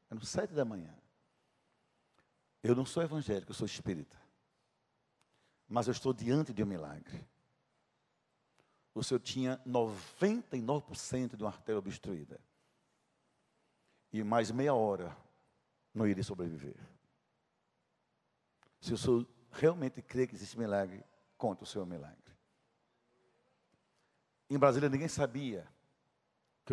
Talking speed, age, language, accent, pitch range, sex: 120 wpm, 60-79, Portuguese, Brazilian, 115-170 Hz, male